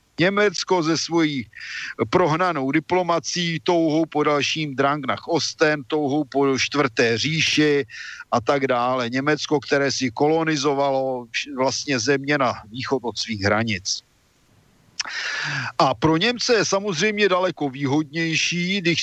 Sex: male